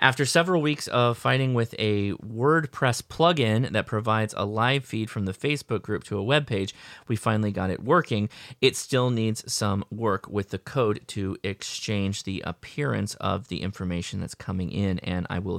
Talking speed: 185 wpm